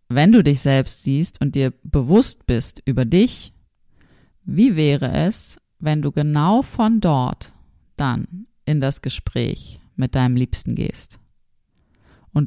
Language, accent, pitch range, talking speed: German, German, 125-165 Hz, 135 wpm